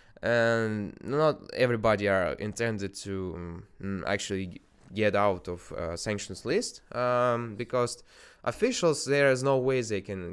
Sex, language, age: male, Russian, 20-39